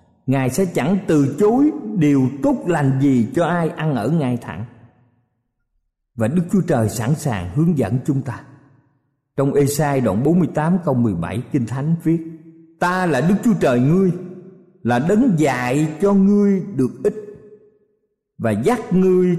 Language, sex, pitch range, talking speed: Vietnamese, male, 130-185 Hz, 160 wpm